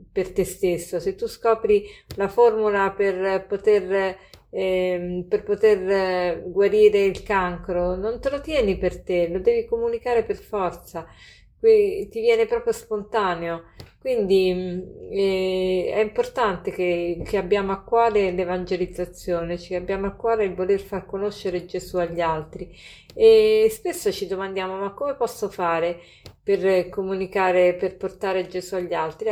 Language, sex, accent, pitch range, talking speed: Italian, female, native, 180-215 Hz, 140 wpm